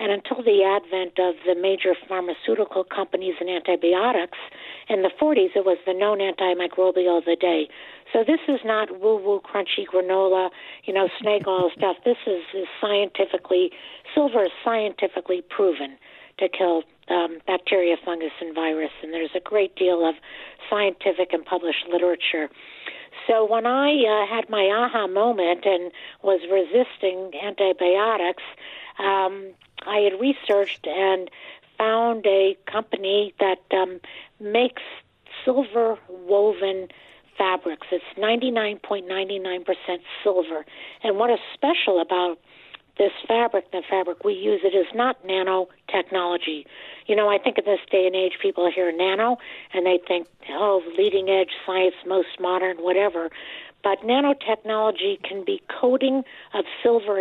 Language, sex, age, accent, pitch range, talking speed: English, female, 50-69, American, 180-215 Hz, 135 wpm